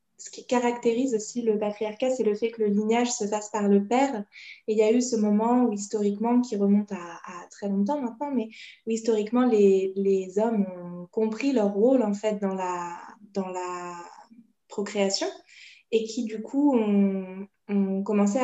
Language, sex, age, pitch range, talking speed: French, female, 20-39, 200-230 Hz, 185 wpm